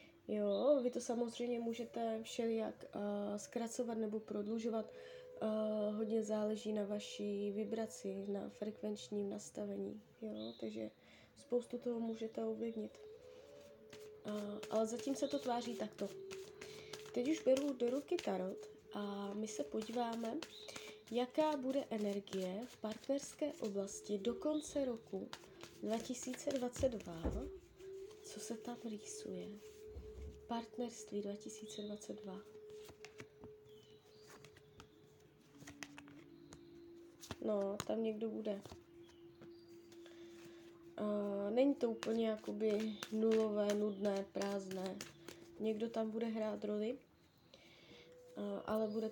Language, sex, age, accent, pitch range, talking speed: Czech, female, 20-39, native, 210-275 Hz, 90 wpm